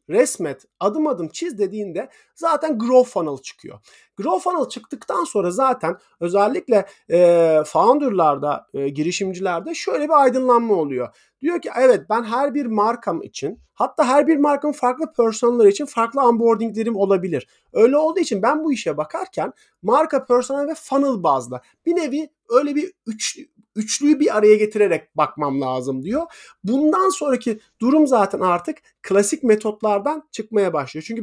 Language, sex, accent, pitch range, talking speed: Turkish, male, native, 185-285 Hz, 145 wpm